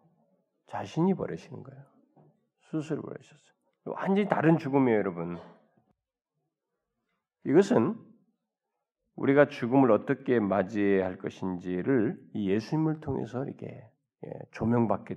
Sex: male